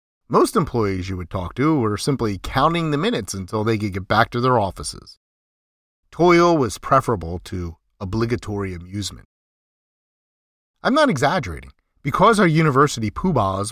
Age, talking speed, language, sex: 40-59, 140 wpm, English, male